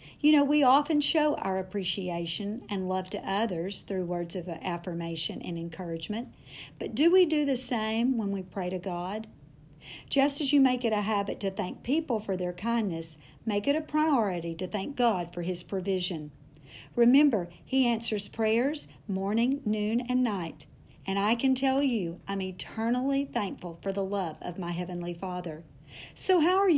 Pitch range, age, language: 175-230 Hz, 50-69, English